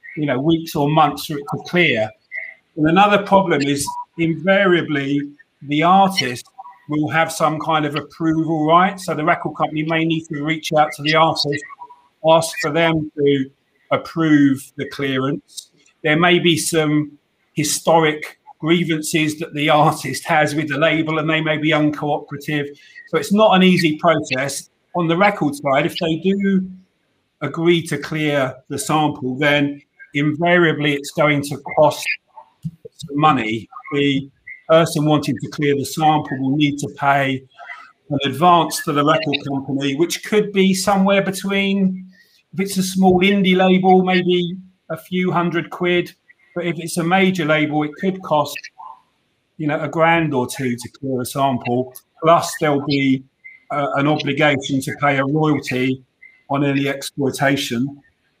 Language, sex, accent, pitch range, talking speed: English, male, British, 145-170 Hz, 155 wpm